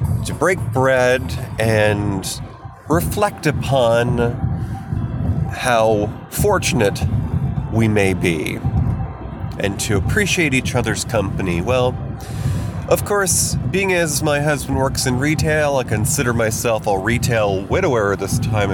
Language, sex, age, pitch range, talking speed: English, male, 30-49, 110-150 Hz, 110 wpm